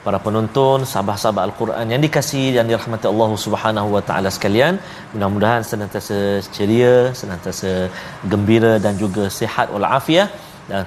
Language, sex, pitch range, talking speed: Malayalam, male, 105-130 Hz, 140 wpm